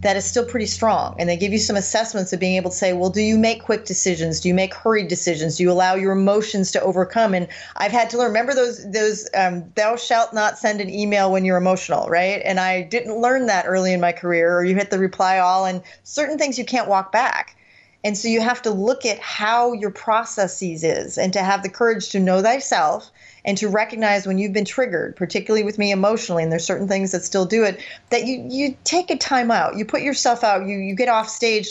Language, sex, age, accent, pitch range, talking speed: English, female, 40-59, American, 185-225 Hz, 245 wpm